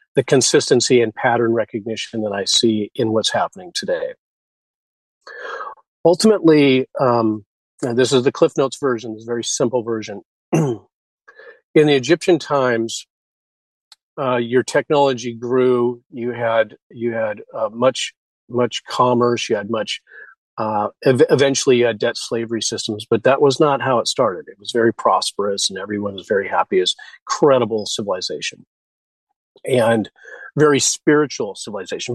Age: 40-59